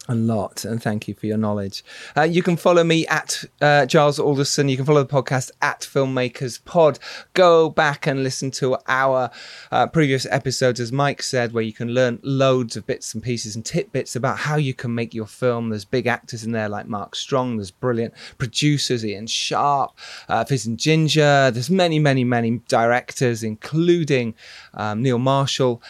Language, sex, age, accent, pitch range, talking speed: English, male, 30-49, British, 115-150 Hz, 190 wpm